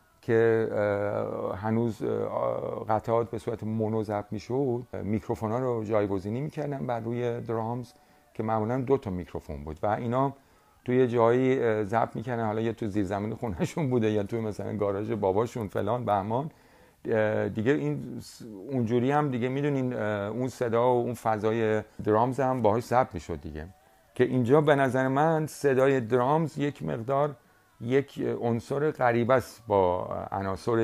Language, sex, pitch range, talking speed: Persian, male, 105-125 Hz, 140 wpm